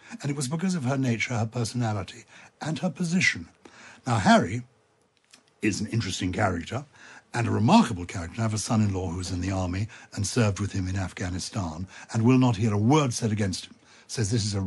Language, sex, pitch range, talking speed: English, male, 100-120 Hz, 200 wpm